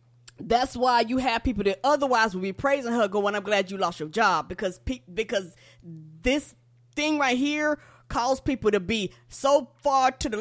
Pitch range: 180-250 Hz